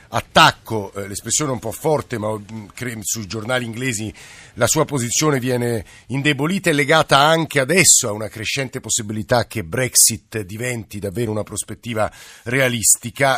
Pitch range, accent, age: 115-140 Hz, native, 50-69